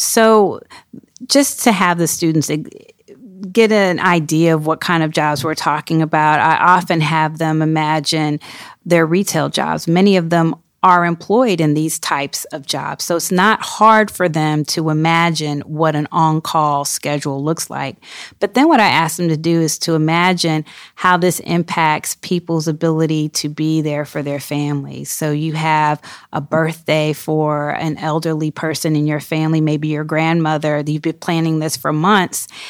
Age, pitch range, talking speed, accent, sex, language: 30-49, 150-175 Hz, 170 wpm, American, female, English